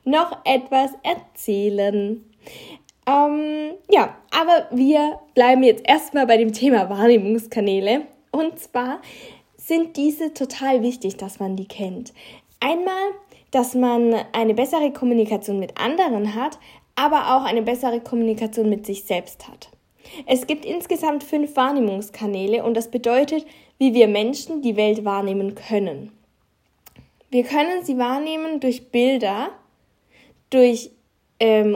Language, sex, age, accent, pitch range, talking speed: German, female, 10-29, German, 225-295 Hz, 125 wpm